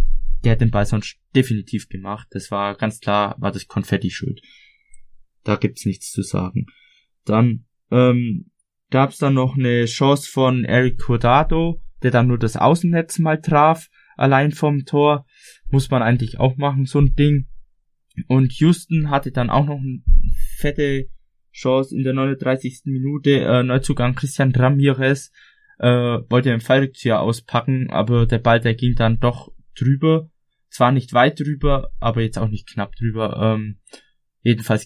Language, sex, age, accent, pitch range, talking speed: German, male, 20-39, German, 115-140 Hz, 155 wpm